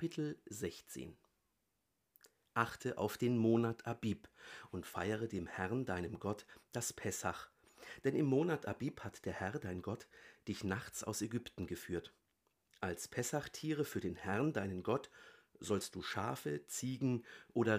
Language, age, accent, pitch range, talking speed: German, 50-69, German, 105-130 Hz, 140 wpm